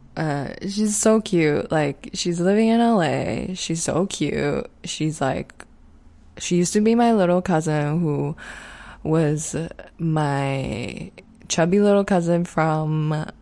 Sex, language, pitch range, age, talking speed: female, English, 155-190 Hz, 20-39, 125 wpm